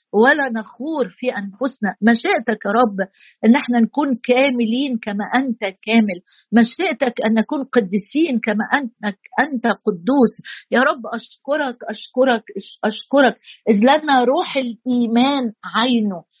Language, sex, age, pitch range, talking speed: Arabic, female, 50-69, 215-260 Hz, 115 wpm